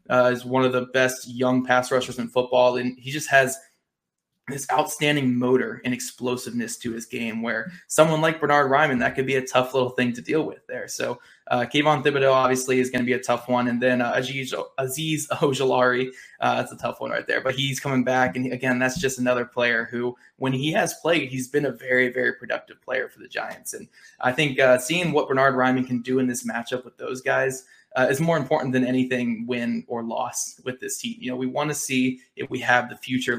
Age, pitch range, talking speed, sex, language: 20-39, 125-150 Hz, 230 wpm, male, English